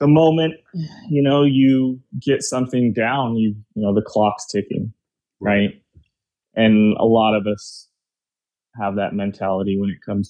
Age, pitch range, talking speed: 20-39, 100-115 Hz, 150 wpm